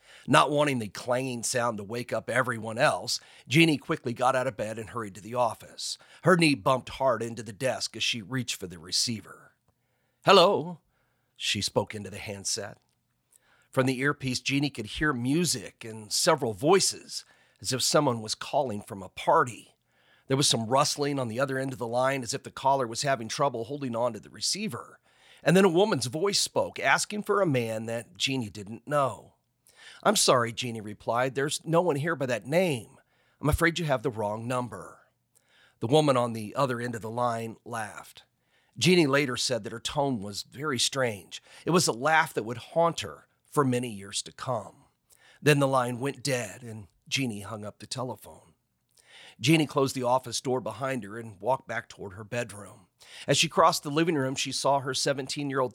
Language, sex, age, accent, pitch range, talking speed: English, male, 40-59, American, 115-140 Hz, 195 wpm